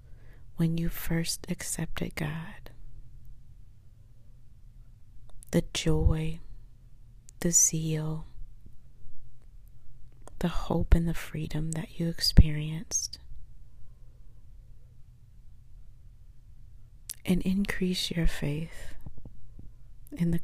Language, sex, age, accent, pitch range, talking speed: English, female, 40-59, American, 115-165 Hz, 70 wpm